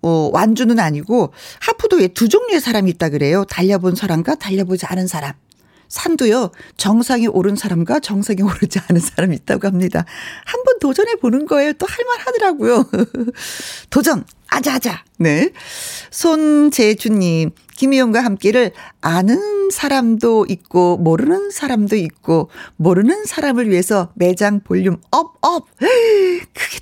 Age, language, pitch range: 40-59, Korean, 185-285 Hz